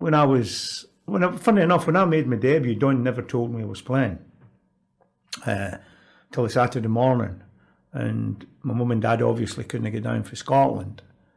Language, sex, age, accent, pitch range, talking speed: English, male, 50-69, British, 115-145 Hz, 185 wpm